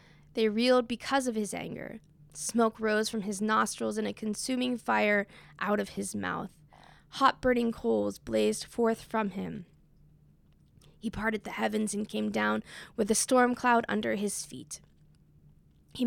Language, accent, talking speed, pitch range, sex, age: English, American, 155 wpm, 200-240 Hz, female, 10-29